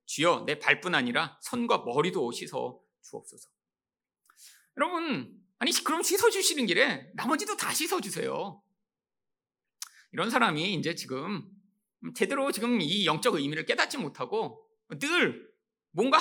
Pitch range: 170-255 Hz